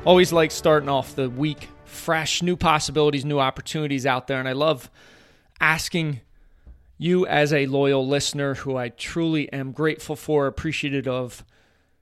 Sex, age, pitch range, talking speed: male, 30-49, 115-160 Hz, 150 wpm